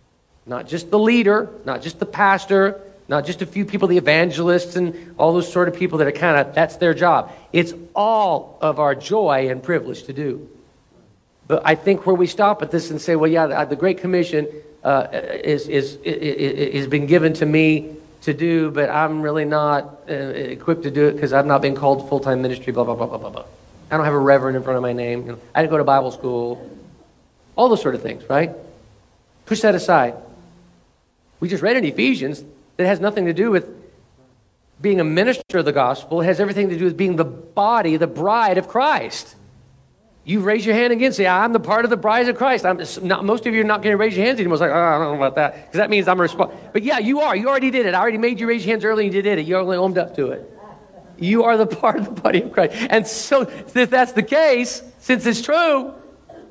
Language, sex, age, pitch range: English, male, 50-69, 150-210 Hz